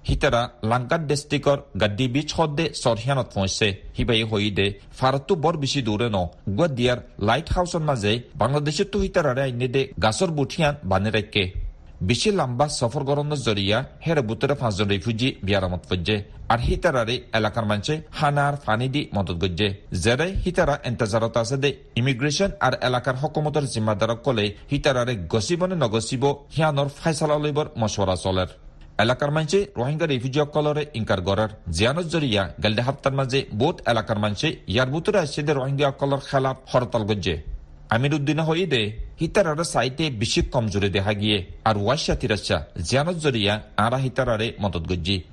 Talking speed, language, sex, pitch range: 60 wpm, Bengali, male, 105-145 Hz